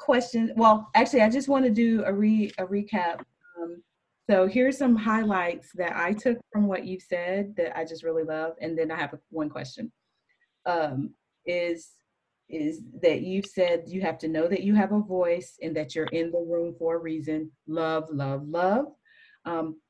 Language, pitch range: English, 165-205 Hz